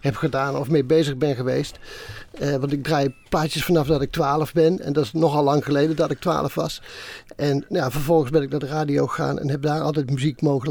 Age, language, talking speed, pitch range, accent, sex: 50-69, Dutch, 235 wpm, 145-175 Hz, Dutch, male